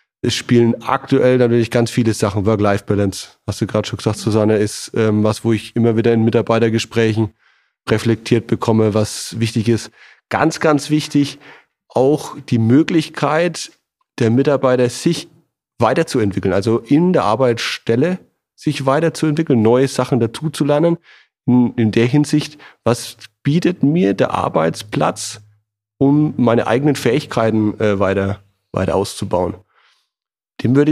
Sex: male